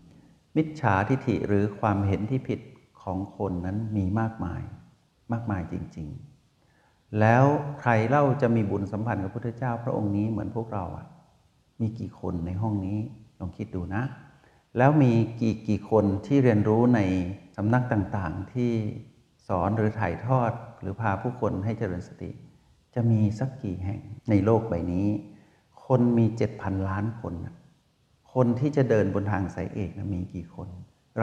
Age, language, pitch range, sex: 60-79, Thai, 95-120 Hz, male